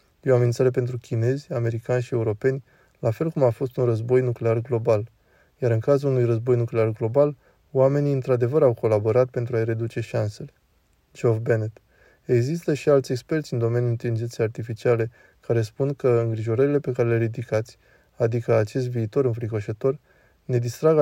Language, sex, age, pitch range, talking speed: Romanian, male, 20-39, 115-135 Hz, 155 wpm